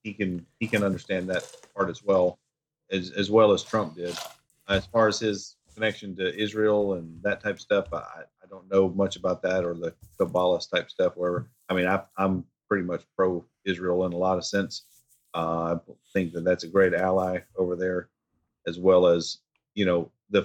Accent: American